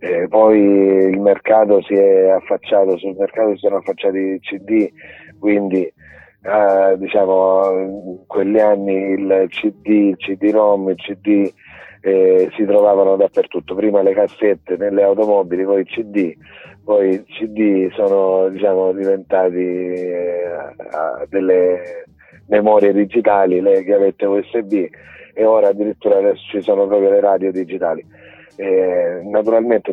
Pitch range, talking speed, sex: 95-110 Hz, 125 wpm, male